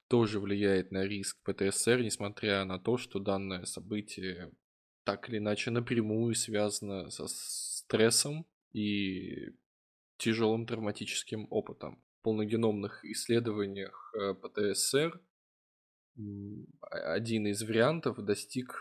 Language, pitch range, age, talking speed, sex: Russian, 100-115 Hz, 20-39, 95 wpm, male